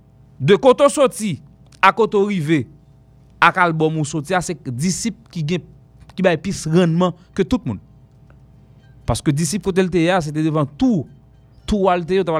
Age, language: 30-49, English